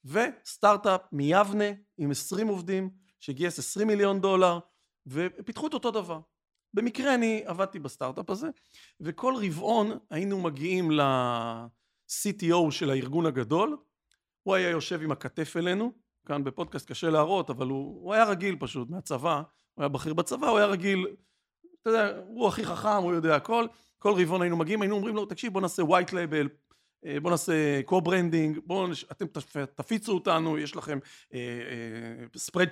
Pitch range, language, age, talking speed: 155-210 Hz, Hebrew, 40-59, 150 wpm